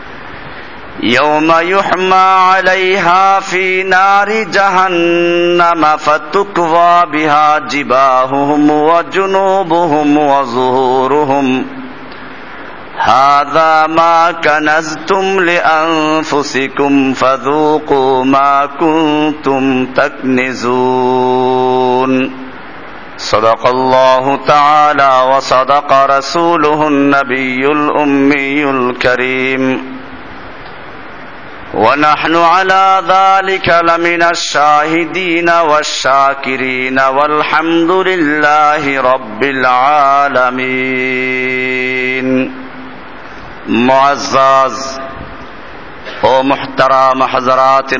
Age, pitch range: 50-69, 130-160 Hz